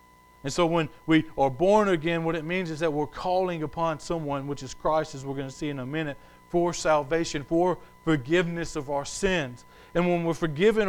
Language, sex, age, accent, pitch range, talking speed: English, male, 40-59, American, 115-160 Hz, 210 wpm